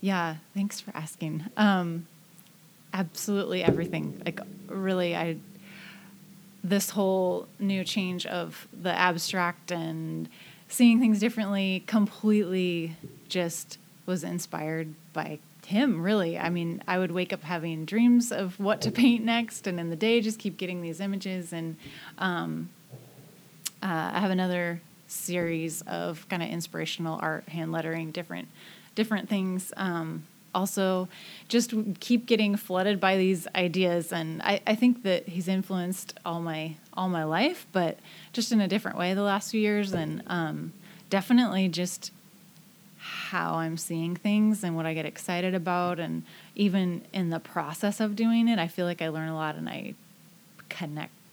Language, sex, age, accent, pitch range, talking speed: English, female, 30-49, American, 170-200 Hz, 150 wpm